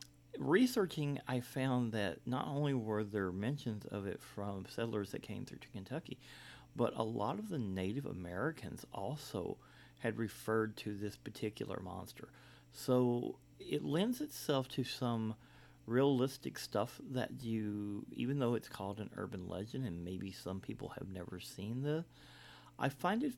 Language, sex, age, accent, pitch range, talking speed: English, male, 40-59, American, 100-130 Hz, 155 wpm